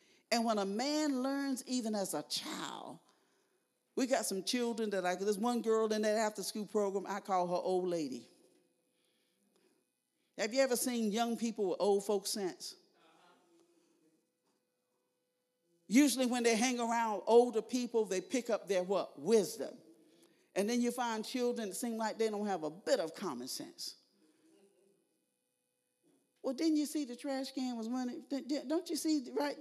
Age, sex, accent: 50-69, male, American